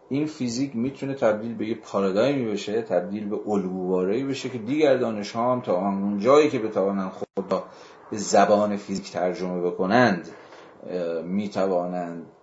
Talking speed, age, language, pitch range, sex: 135 wpm, 40-59, Persian, 95-125 Hz, male